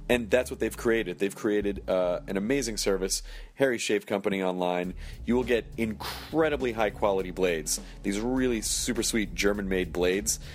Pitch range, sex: 95-125 Hz, male